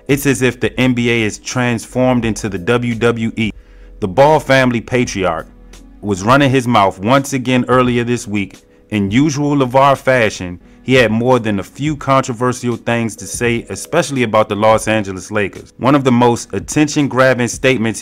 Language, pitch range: English, 100-120 Hz